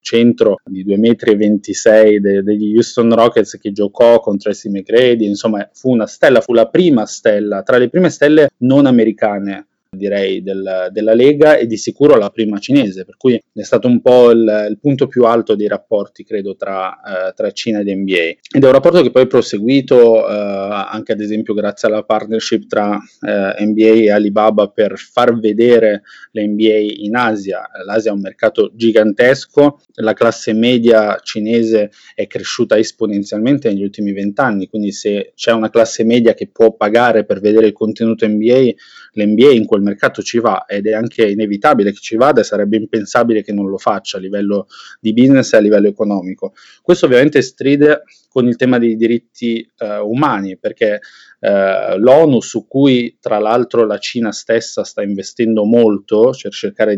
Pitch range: 105-120 Hz